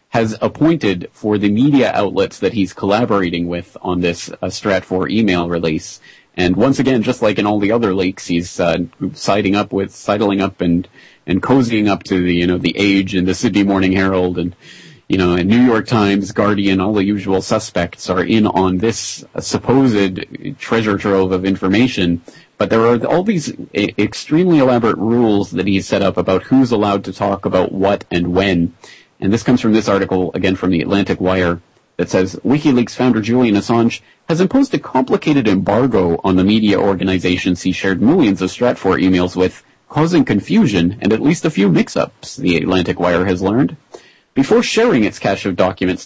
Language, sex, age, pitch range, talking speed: English, male, 30-49, 90-110 Hz, 190 wpm